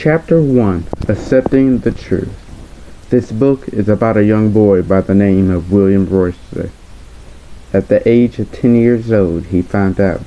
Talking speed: 165 wpm